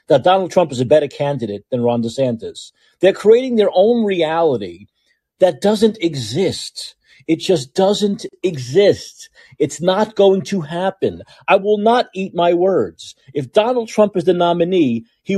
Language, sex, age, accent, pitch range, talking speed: English, male, 50-69, American, 125-195 Hz, 155 wpm